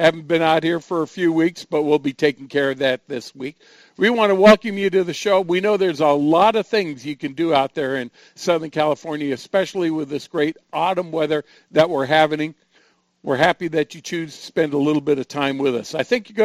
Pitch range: 155-200 Hz